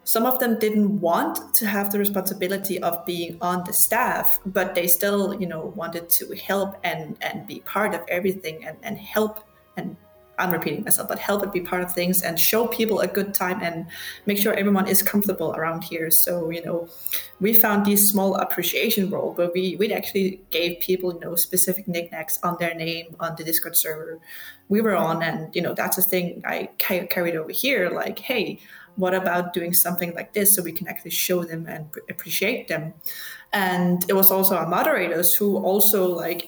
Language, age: English, 30-49